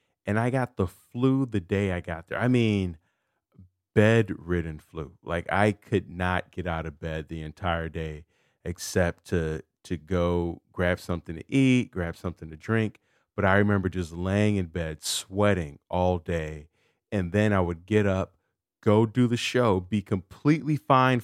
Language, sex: English, male